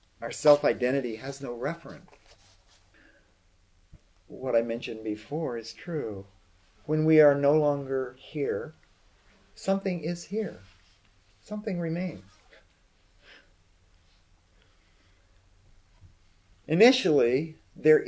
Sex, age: male, 40-59